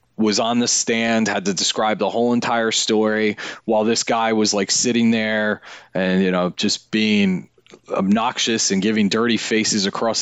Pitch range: 110-130 Hz